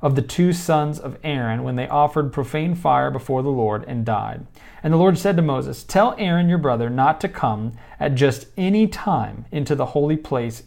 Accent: American